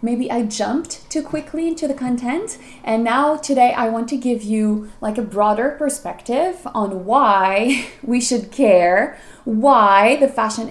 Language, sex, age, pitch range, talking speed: English, female, 20-39, 200-250 Hz, 155 wpm